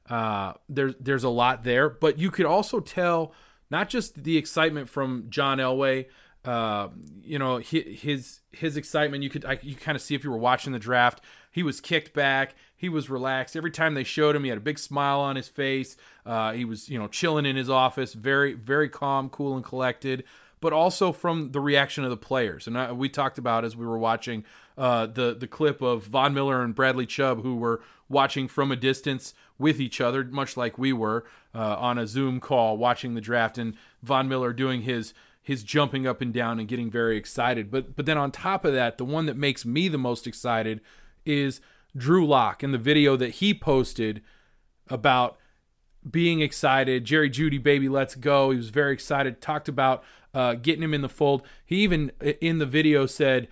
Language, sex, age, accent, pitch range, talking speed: English, male, 30-49, American, 125-150 Hz, 205 wpm